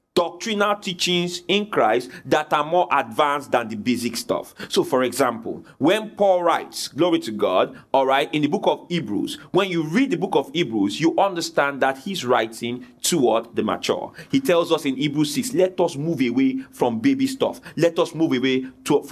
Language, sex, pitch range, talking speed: English, male, 135-185 Hz, 190 wpm